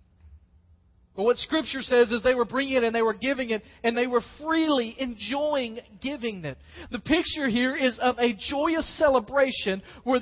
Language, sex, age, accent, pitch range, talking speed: English, male, 40-59, American, 170-255 Hz, 170 wpm